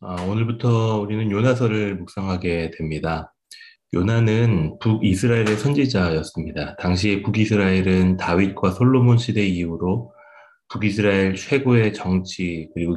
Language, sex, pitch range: Korean, male, 90-115 Hz